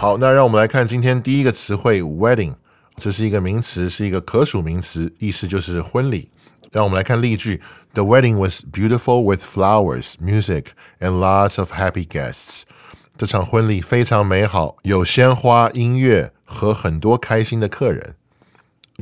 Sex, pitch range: male, 90-120 Hz